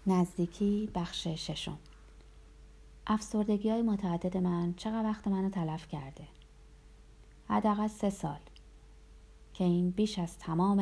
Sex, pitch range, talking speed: female, 150-195 Hz, 110 wpm